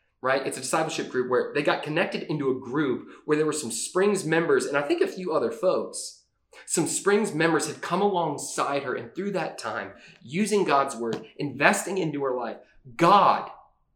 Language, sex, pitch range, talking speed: English, male, 165-235 Hz, 190 wpm